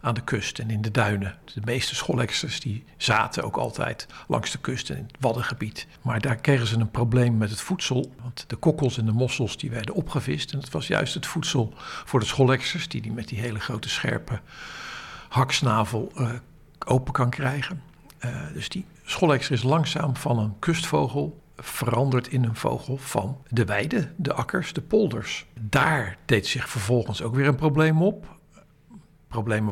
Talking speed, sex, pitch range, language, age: 180 wpm, male, 115-150 Hz, Dutch, 60-79